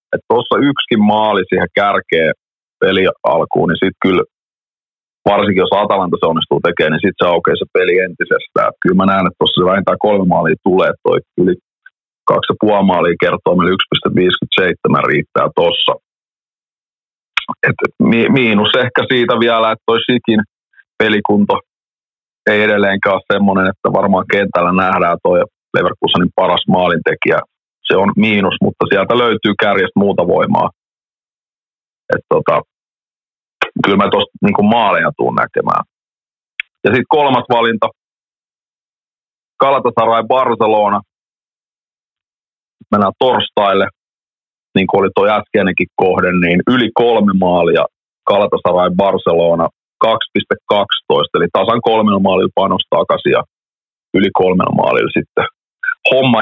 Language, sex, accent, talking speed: Finnish, male, native, 120 wpm